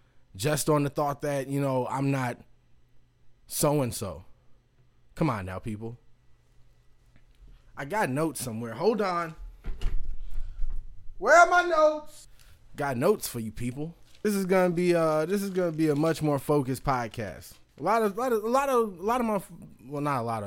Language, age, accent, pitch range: English, 20-39, American, 120-160 Hz